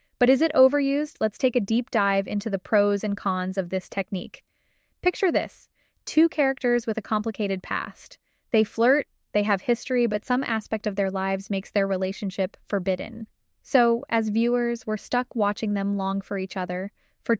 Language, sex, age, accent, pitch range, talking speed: English, female, 10-29, American, 200-235 Hz, 180 wpm